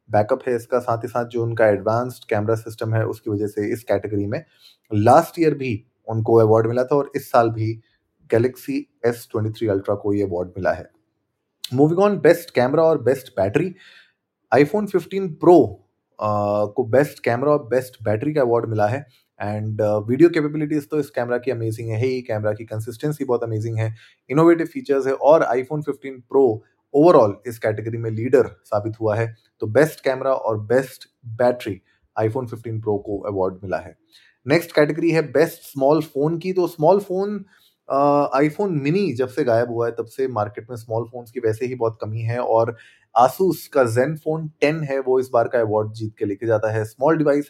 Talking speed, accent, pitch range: 145 wpm, native, 110-145 Hz